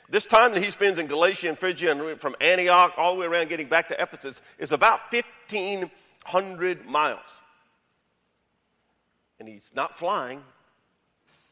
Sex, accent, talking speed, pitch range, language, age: male, American, 145 wpm, 110-170 Hz, English, 50-69